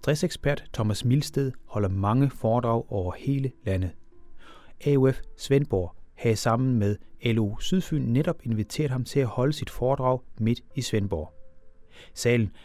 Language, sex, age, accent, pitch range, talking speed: Danish, male, 30-49, native, 105-140 Hz, 135 wpm